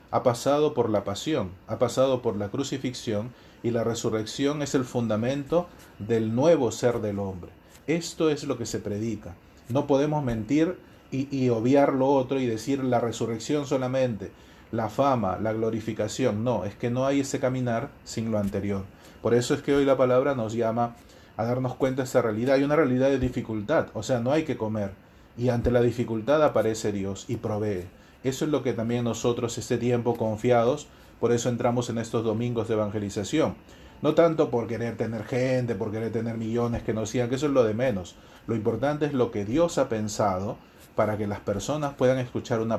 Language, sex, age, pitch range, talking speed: Spanish, male, 30-49, 110-135 Hz, 195 wpm